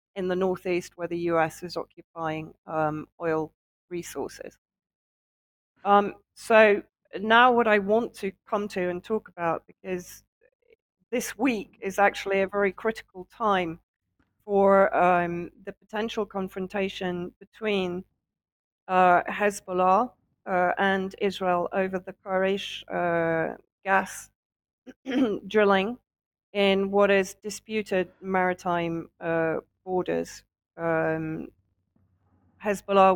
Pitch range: 170-200 Hz